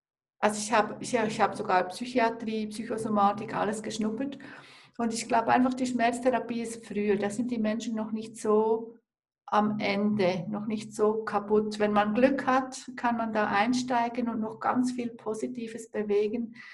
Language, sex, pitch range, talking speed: German, female, 205-235 Hz, 160 wpm